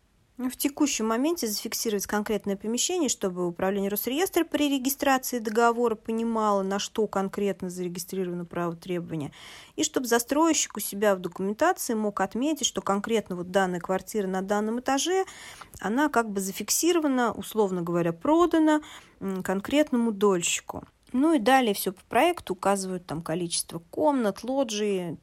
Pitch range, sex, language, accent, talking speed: 180-230 Hz, female, Russian, native, 135 wpm